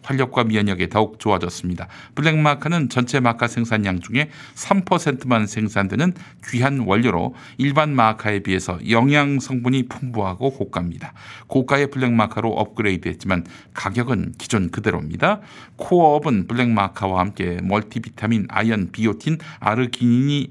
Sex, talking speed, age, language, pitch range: male, 105 wpm, 50-69, English, 105-150 Hz